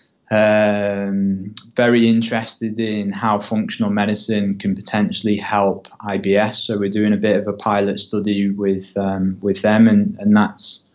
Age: 20-39